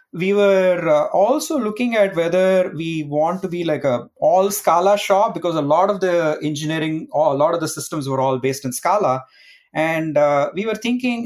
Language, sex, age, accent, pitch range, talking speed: English, male, 30-49, Indian, 130-190 Hz, 190 wpm